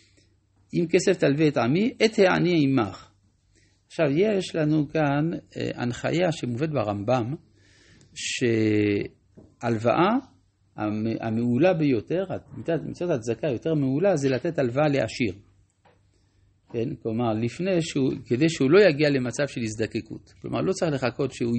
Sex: male